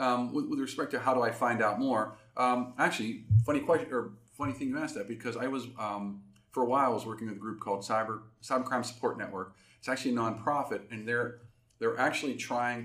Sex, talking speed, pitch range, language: male, 230 wpm, 110-135 Hz, English